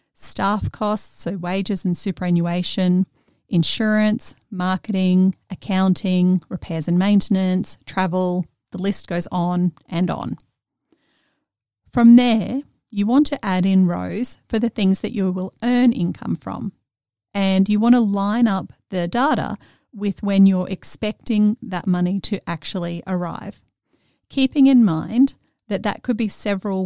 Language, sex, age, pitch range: English, female, 40-59, 180-220 Hz